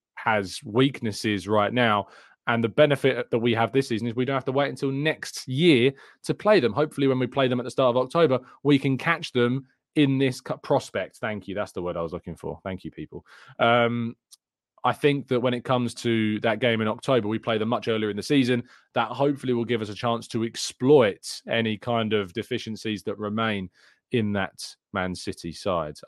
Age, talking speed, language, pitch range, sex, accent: 20-39, 215 wpm, English, 100-130 Hz, male, British